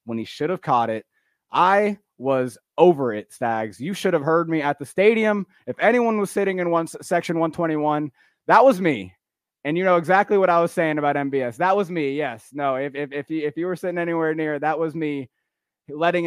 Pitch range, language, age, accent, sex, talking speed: 125-160 Hz, English, 20-39, American, male, 210 wpm